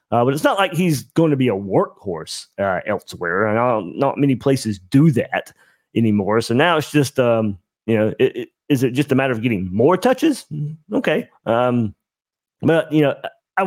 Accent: American